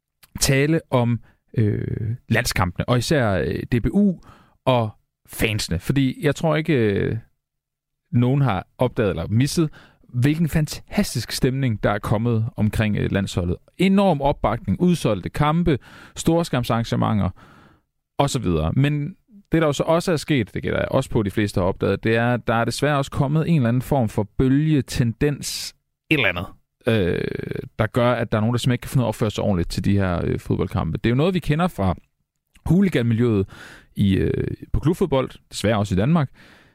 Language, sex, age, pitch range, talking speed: Danish, male, 40-59, 105-145 Hz, 165 wpm